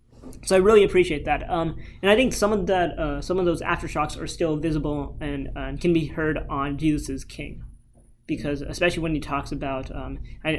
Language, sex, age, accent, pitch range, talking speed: English, male, 20-39, American, 140-165 Hz, 205 wpm